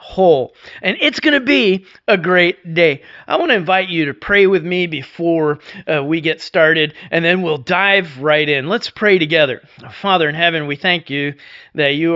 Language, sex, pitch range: English, male, 145-185 Hz